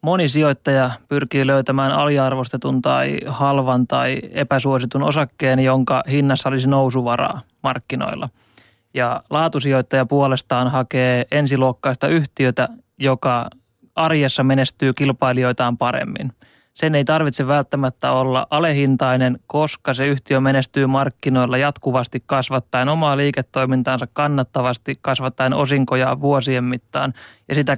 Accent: native